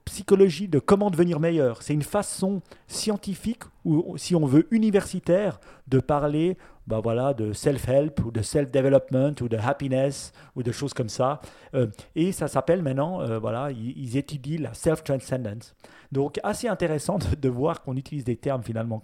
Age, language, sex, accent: 40-59, French, male, French